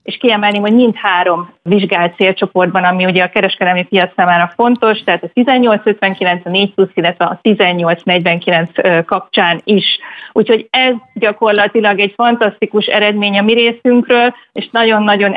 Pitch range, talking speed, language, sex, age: 185-225 Hz, 135 wpm, Hungarian, female, 30-49